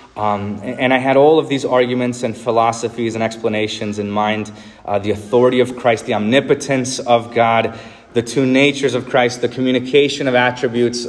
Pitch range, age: 120-160 Hz, 30-49